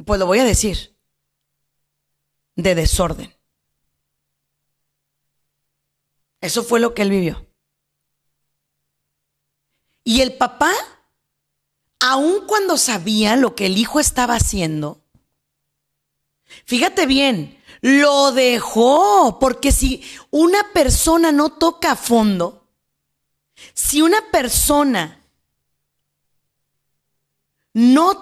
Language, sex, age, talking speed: Spanish, female, 40-59, 85 wpm